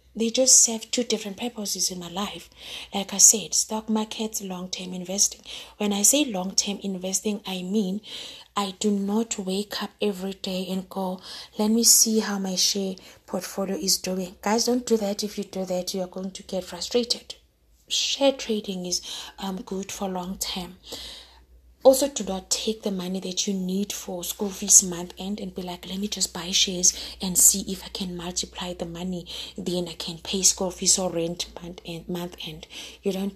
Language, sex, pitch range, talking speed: English, female, 185-220 Hz, 190 wpm